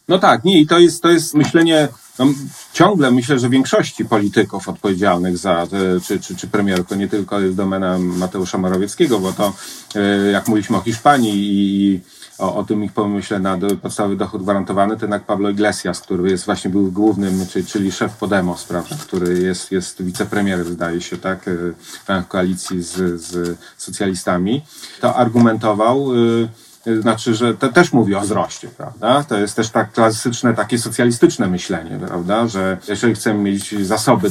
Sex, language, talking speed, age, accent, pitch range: male, Polish, 165 wpm, 30-49, native, 95-115 Hz